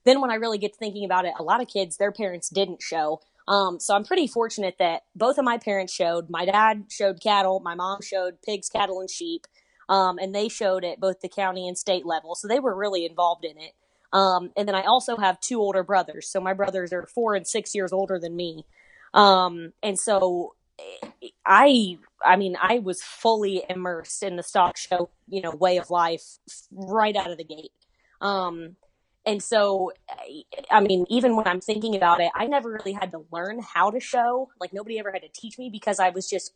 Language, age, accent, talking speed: English, 20-39, American, 215 wpm